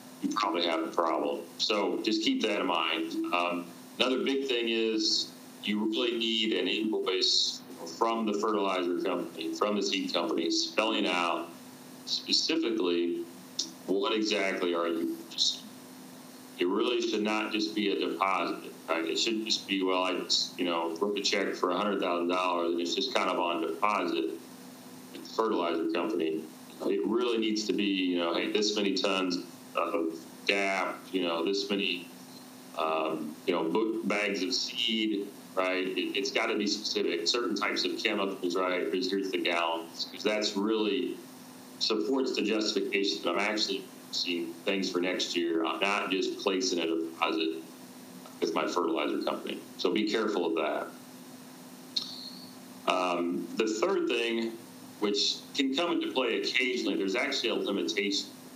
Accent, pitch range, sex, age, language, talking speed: American, 85-115 Hz, male, 40-59, English, 160 wpm